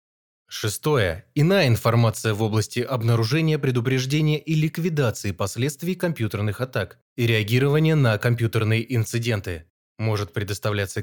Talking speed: 105 wpm